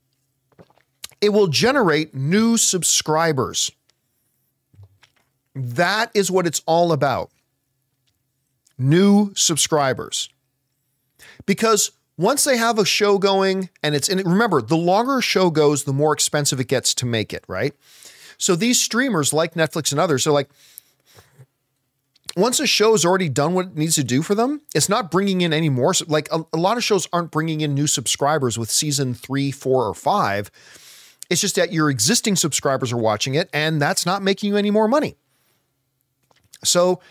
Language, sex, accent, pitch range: English, male, American, 135-185 Hz